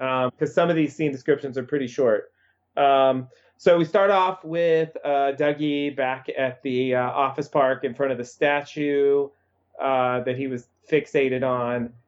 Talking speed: 175 wpm